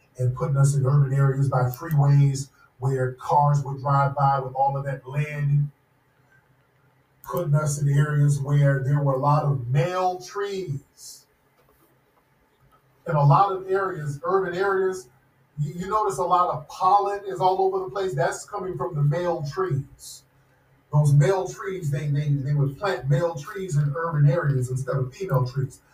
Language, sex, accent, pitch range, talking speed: English, male, American, 135-165 Hz, 165 wpm